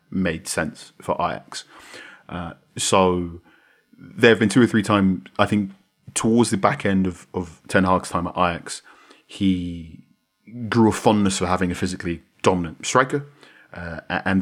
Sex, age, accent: male, 30-49, British